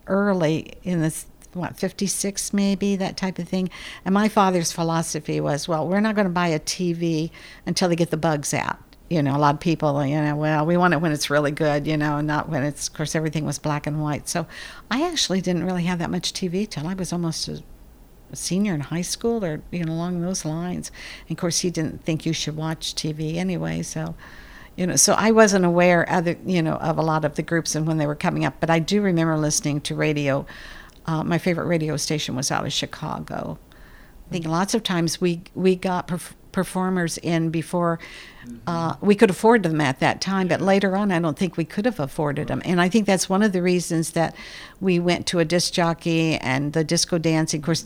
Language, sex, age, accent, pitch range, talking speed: English, female, 60-79, American, 155-180 Hz, 230 wpm